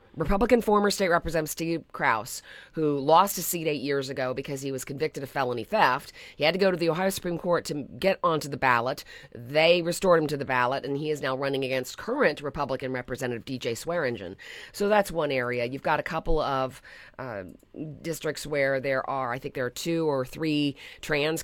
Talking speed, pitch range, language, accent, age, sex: 205 wpm, 135-165 Hz, English, American, 40-59, female